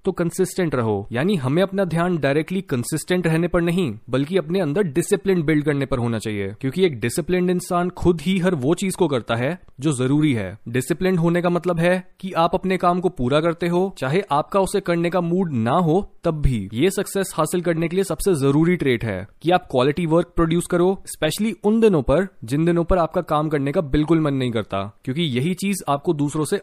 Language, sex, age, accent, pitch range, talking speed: Hindi, male, 20-39, native, 140-185 Hz, 165 wpm